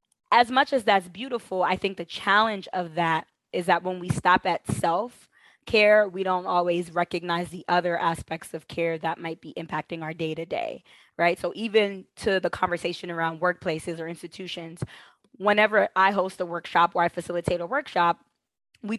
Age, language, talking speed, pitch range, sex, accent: 20-39, English, 175 wpm, 175-210 Hz, female, American